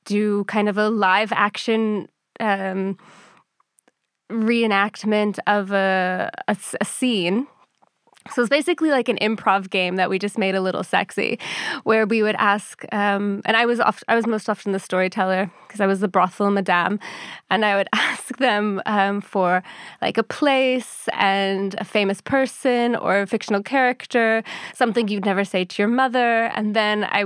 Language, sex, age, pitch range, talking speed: English, female, 20-39, 195-230 Hz, 165 wpm